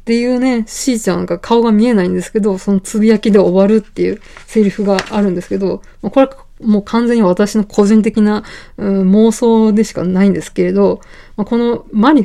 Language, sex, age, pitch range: Japanese, female, 20-39, 190-225 Hz